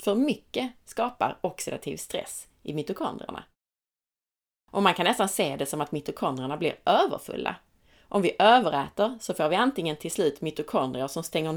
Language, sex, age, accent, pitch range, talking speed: Swedish, female, 30-49, native, 150-220 Hz, 155 wpm